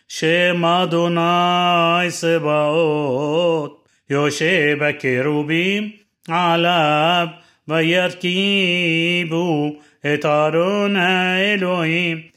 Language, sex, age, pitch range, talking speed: Hebrew, male, 30-49, 150-175 Hz, 50 wpm